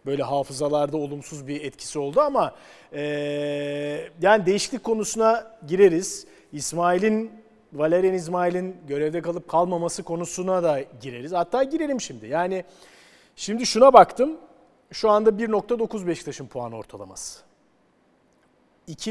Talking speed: 105 wpm